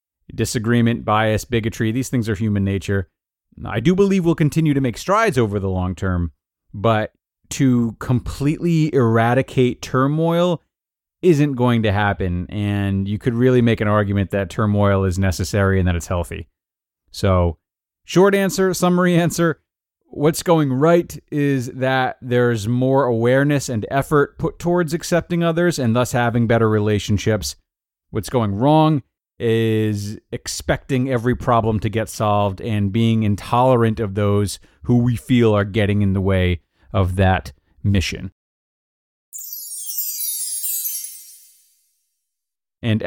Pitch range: 100-140 Hz